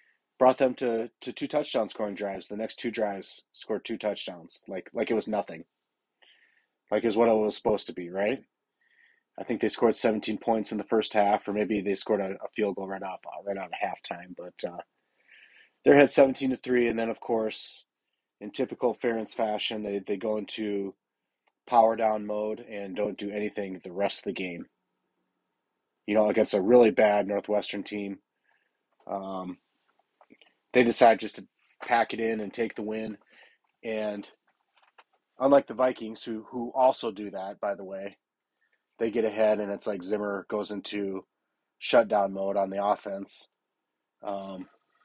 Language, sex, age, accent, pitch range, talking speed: English, male, 30-49, American, 100-115 Hz, 175 wpm